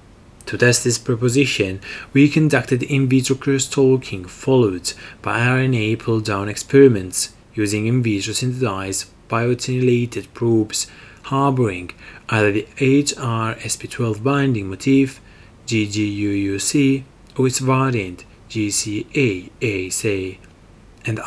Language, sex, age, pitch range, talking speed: English, male, 30-49, 105-130 Hz, 85 wpm